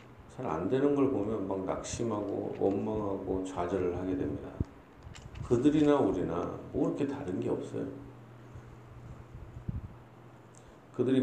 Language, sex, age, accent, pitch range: Korean, male, 40-59, native, 95-125 Hz